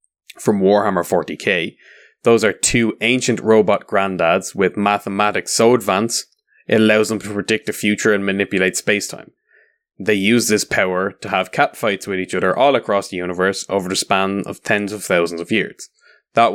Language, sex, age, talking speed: English, male, 20-39, 170 wpm